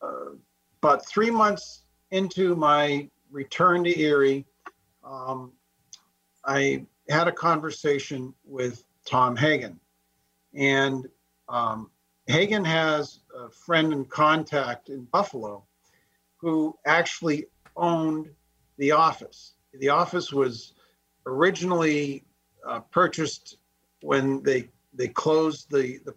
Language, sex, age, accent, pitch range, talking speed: English, male, 50-69, American, 130-155 Hz, 100 wpm